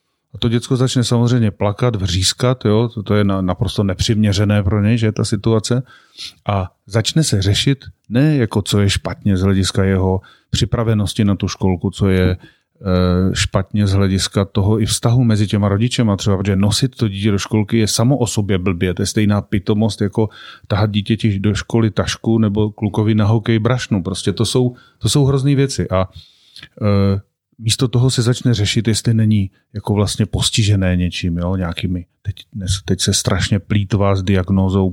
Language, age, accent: Czech, 30-49, native